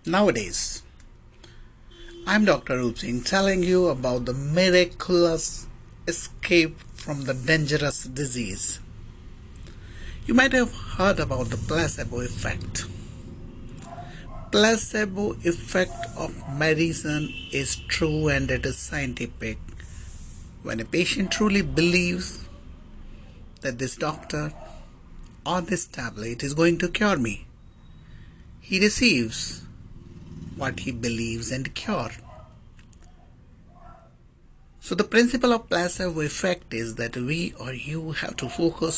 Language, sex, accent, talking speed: English, male, Indian, 105 wpm